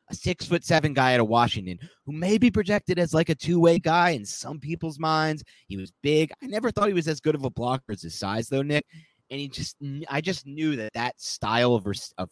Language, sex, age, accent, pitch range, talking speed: English, male, 30-49, American, 100-160 Hz, 245 wpm